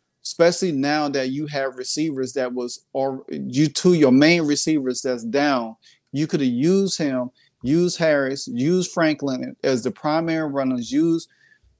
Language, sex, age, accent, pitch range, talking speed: English, male, 30-49, American, 130-160 Hz, 155 wpm